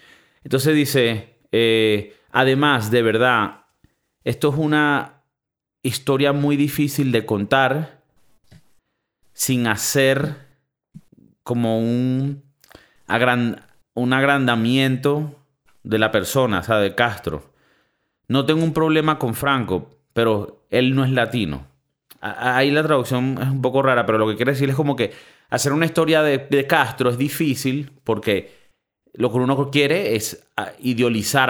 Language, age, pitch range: Spanish, 30-49, 115-150 Hz